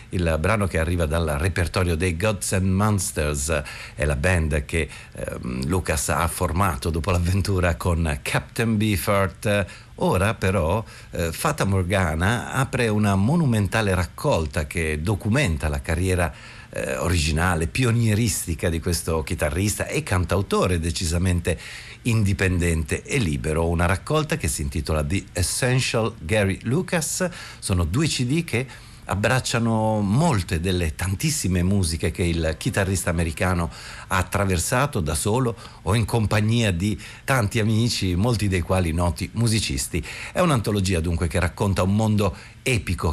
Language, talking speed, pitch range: Italian, 130 wpm, 85-110 Hz